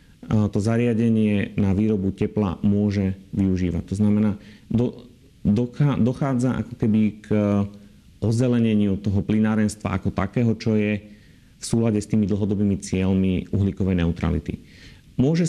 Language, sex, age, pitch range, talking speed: Slovak, male, 40-59, 100-120 Hz, 120 wpm